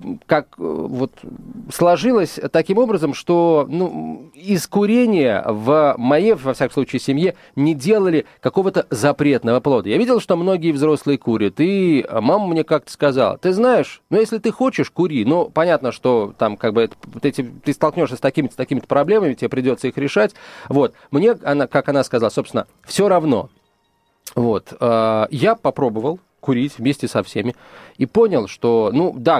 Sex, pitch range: male, 130-180 Hz